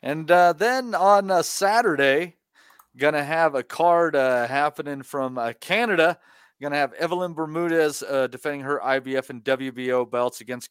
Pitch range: 125-150 Hz